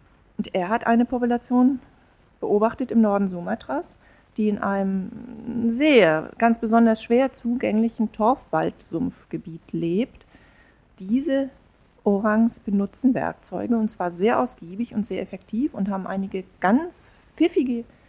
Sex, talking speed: female, 115 wpm